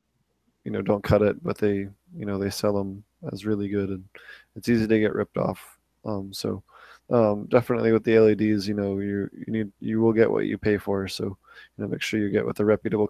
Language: English